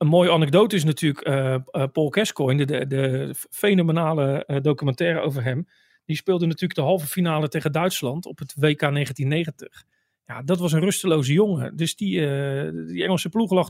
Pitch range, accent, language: 150-180 Hz, Dutch, Dutch